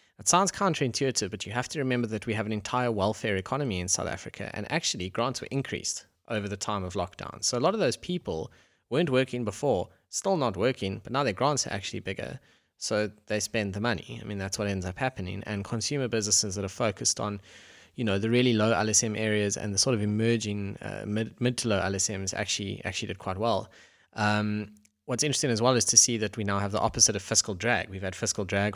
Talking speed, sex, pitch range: 225 wpm, male, 95-115 Hz